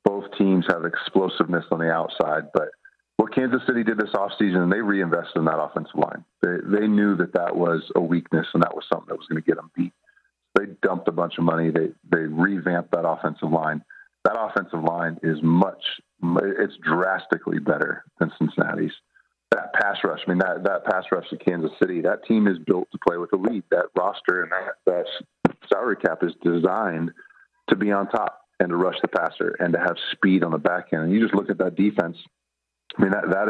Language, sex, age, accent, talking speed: English, male, 40-59, American, 215 wpm